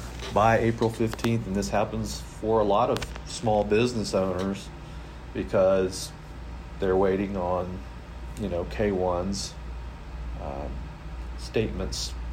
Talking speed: 100 wpm